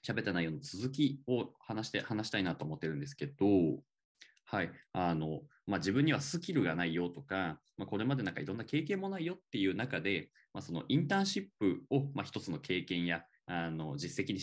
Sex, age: male, 20-39